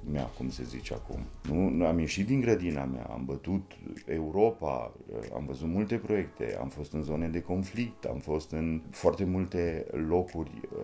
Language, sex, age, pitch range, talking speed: Romanian, male, 30-49, 75-110 Hz, 165 wpm